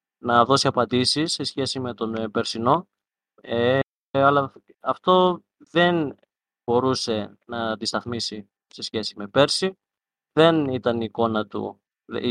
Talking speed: 95 wpm